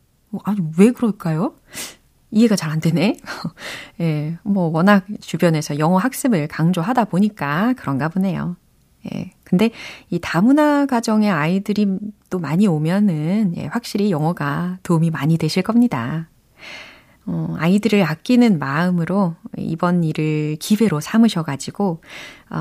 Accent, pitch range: native, 160-215 Hz